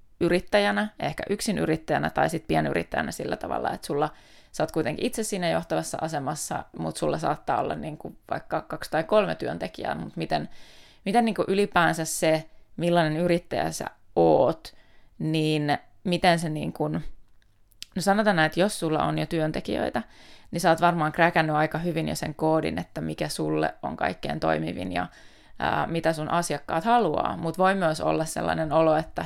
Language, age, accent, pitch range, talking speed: Finnish, 20-39, native, 150-180 Hz, 165 wpm